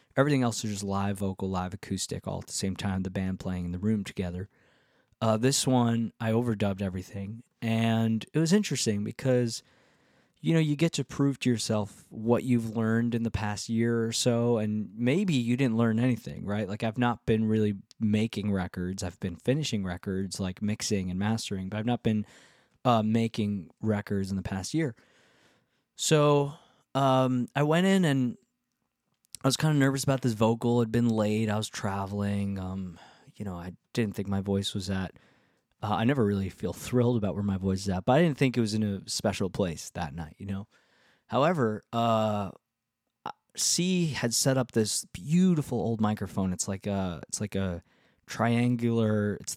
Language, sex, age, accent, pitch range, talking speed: English, male, 20-39, American, 95-120 Hz, 190 wpm